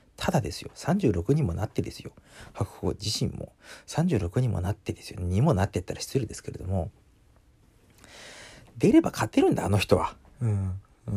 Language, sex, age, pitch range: Japanese, male, 40-59, 95-130 Hz